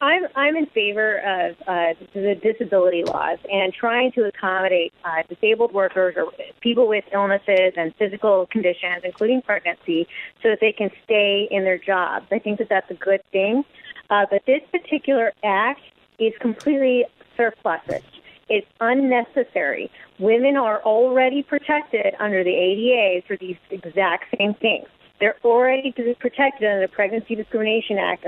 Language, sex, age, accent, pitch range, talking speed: English, female, 30-49, American, 195-245 Hz, 150 wpm